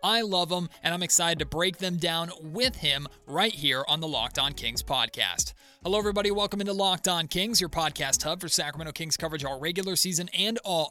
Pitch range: 145-185 Hz